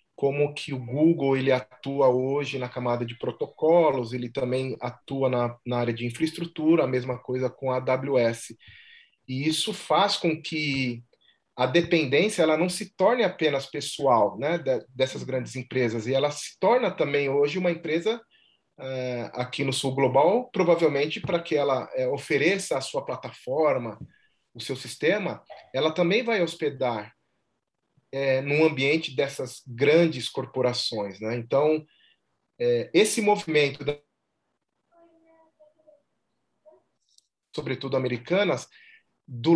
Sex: male